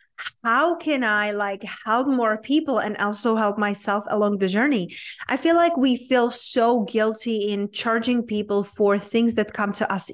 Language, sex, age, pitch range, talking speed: English, female, 30-49, 205-255 Hz, 180 wpm